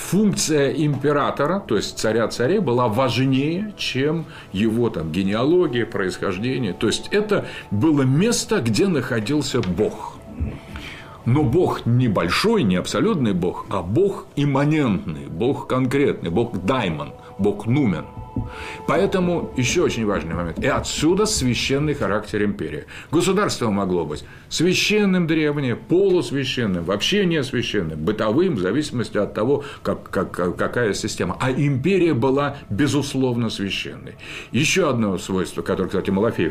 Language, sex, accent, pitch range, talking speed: Russian, male, native, 115-165 Hz, 120 wpm